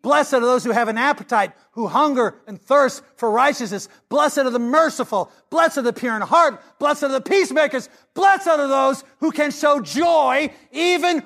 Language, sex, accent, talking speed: English, male, American, 185 wpm